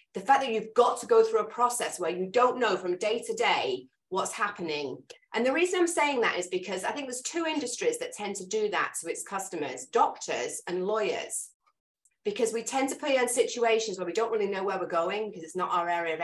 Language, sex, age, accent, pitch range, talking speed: English, female, 30-49, British, 200-310 Hz, 240 wpm